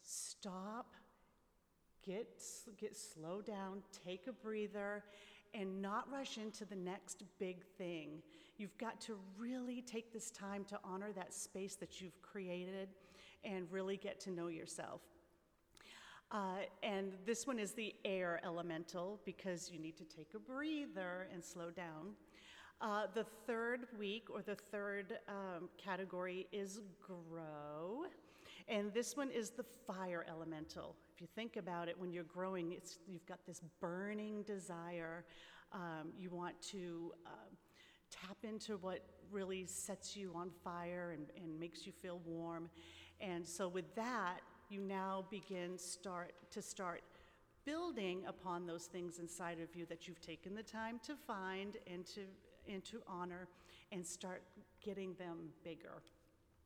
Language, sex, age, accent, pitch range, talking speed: English, female, 40-59, American, 175-210 Hz, 145 wpm